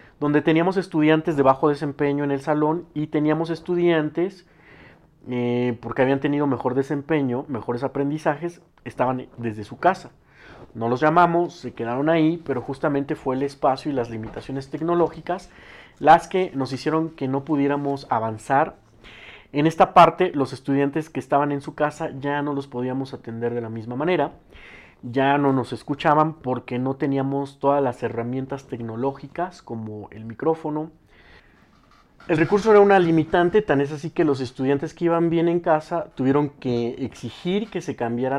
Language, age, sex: Spanish, 40-59, male